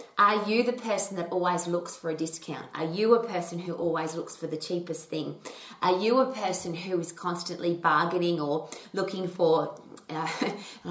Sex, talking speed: female, 180 wpm